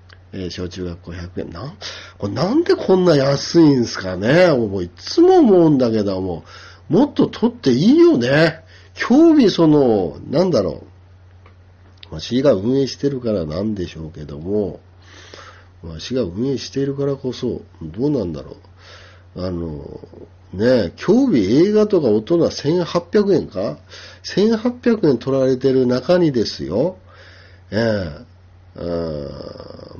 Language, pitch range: Japanese, 90-145 Hz